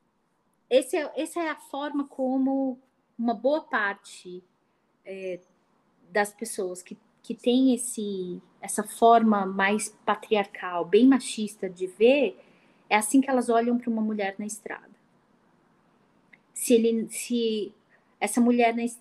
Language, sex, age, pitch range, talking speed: Portuguese, female, 20-39, 195-245 Hz, 125 wpm